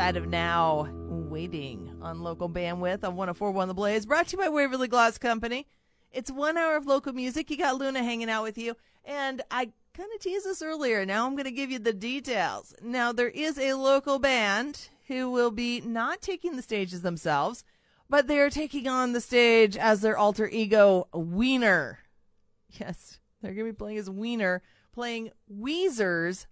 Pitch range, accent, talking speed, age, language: 195-260 Hz, American, 180 wpm, 30-49, English